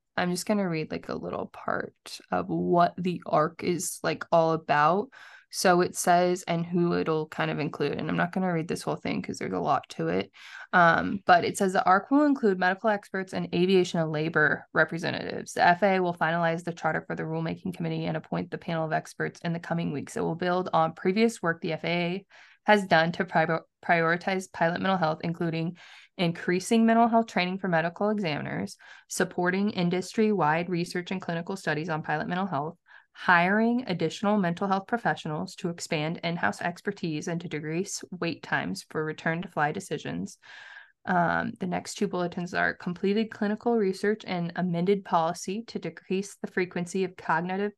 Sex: female